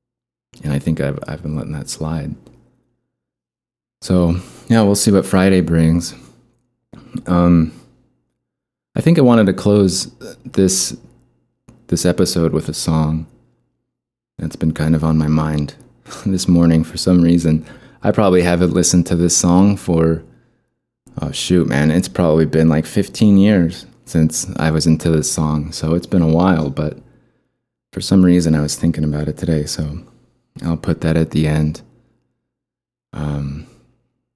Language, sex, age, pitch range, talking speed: English, male, 20-39, 80-90 Hz, 150 wpm